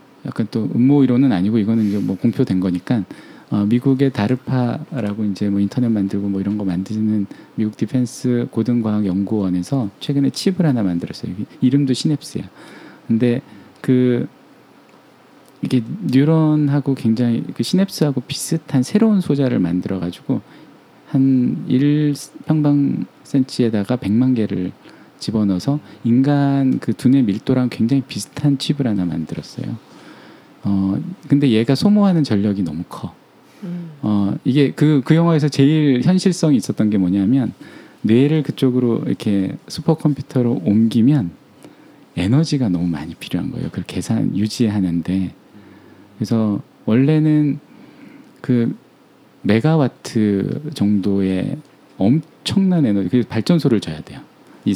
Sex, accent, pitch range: male, native, 105-145 Hz